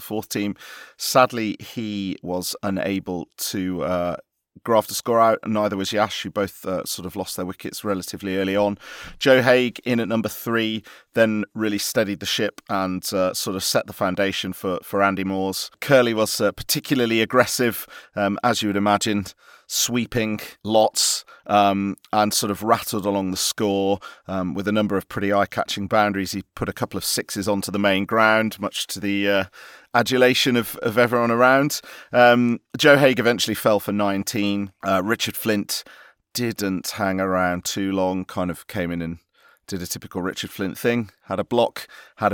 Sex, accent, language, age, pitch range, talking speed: male, British, English, 40-59, 95-115 Hz, 180 wpm